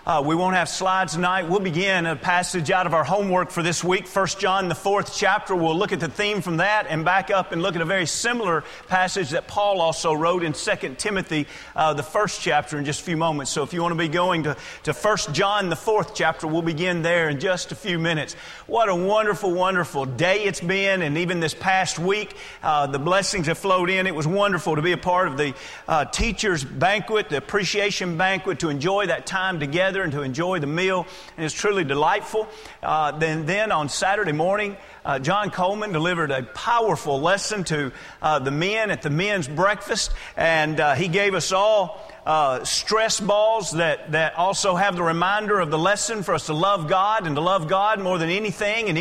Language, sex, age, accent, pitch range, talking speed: English, male, 40-59, American, 160-200 Hz, 215 wpm